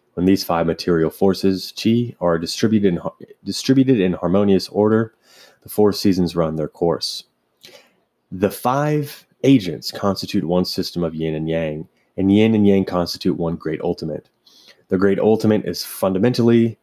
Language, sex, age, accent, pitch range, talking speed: English, male, 30-49, American, 85-105 Hz, 145 wpm